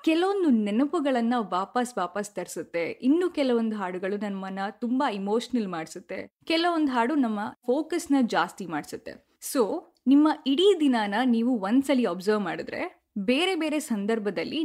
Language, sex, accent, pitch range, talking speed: Kannada, female, native, 210-285 Hz, 125 wpm